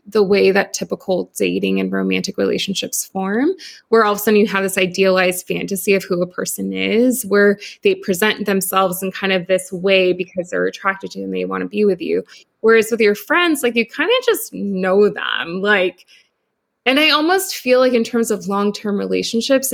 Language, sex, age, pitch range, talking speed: English, female, 20-39, 185-220 Hz, 205 wpm